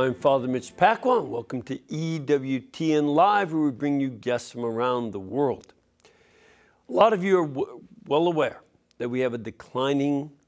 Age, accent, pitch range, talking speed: 60-79, American, 120-160 Hz, 165 wpm